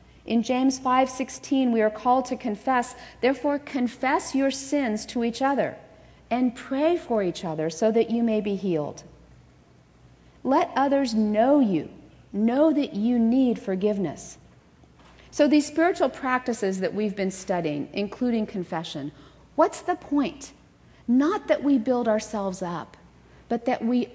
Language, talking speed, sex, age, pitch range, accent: English, 140 wpm, female, 40-59, 210-280 Hz, American